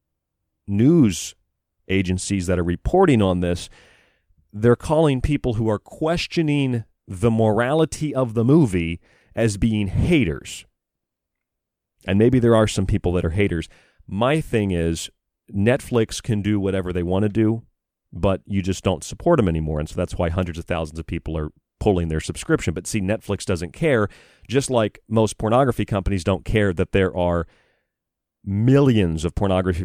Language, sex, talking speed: English, male, 160 wpm